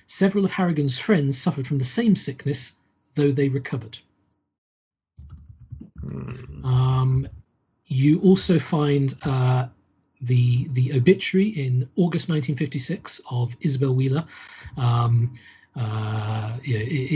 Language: English